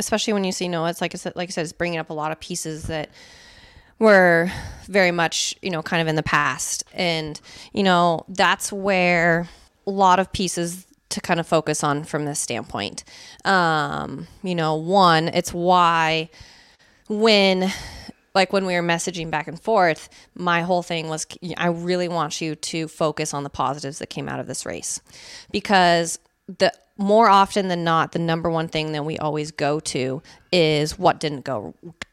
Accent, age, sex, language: American, 30-49, female, English